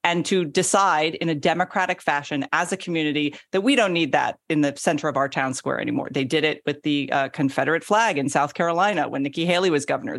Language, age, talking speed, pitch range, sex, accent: English, 40-59, 230 wpm, 150-210 Hz, female, American